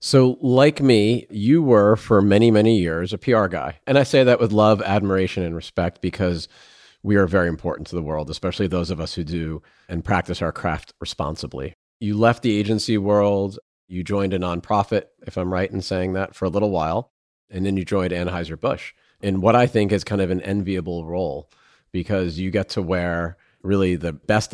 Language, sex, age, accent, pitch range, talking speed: English, male, 40-59, American, 90-110 Hz, 200 wpm